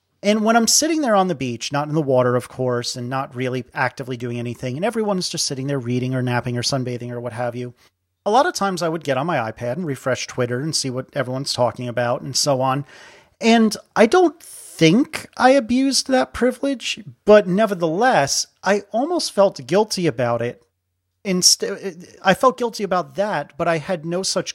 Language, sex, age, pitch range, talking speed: English, male, 40-59, 125-185 Hz, 205 wpm